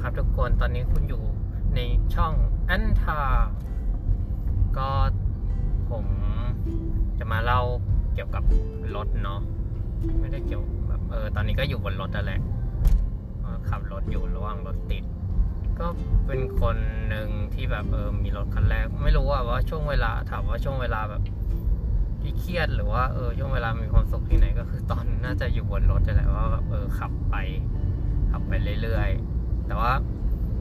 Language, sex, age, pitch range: Thai, male, 20-39, 90-110 Hz